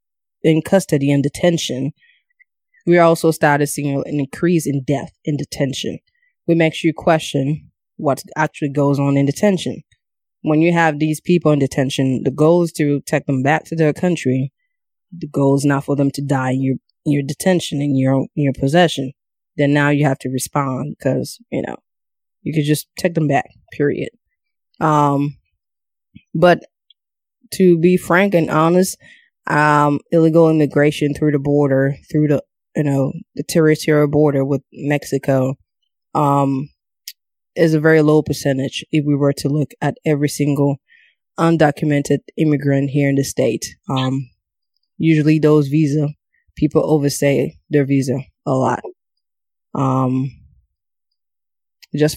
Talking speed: 150 wpm